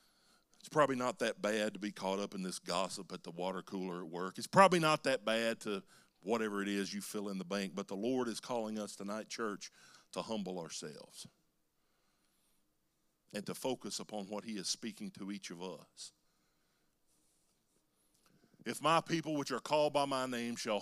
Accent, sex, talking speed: American, male, 185 wpm